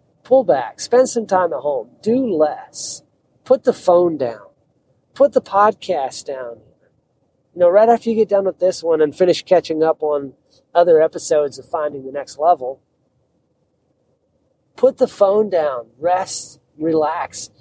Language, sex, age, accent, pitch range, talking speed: English, male, 40-59, American, 135-210 Hz, 155 wpm